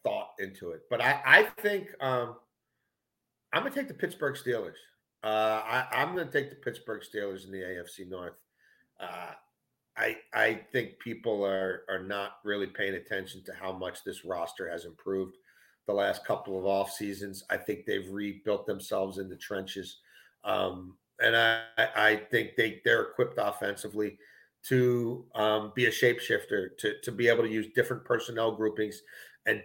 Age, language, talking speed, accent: 40-59, English, 170 wpm, American